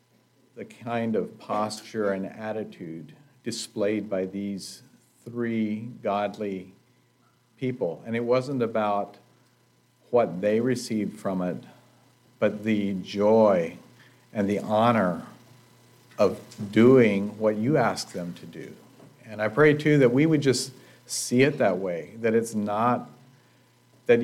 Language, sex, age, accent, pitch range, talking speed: English, male, 50-69, American, 100-120 Hz, 125 wpm